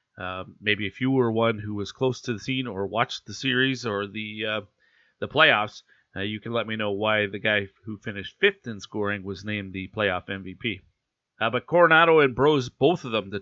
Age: 40-59